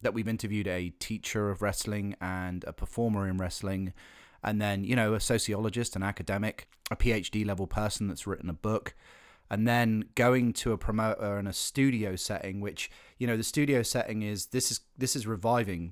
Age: 30-49